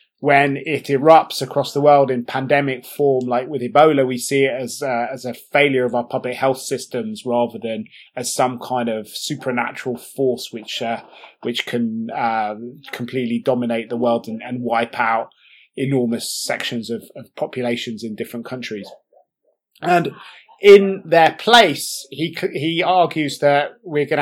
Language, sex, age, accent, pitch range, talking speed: English, male, 20-39, British, 125-155 Hz, 160 wpm